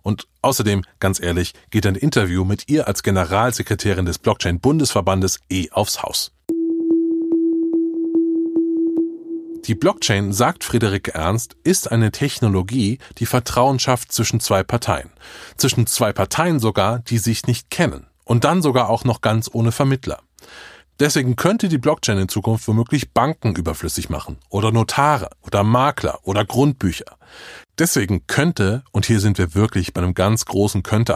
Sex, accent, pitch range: male, German, 100-145 Hz